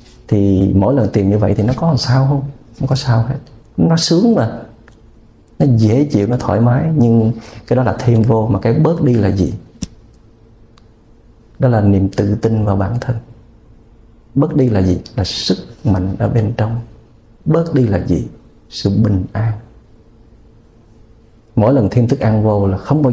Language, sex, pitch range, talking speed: Vietnamese, male, 105-125 Hz, 180 wpm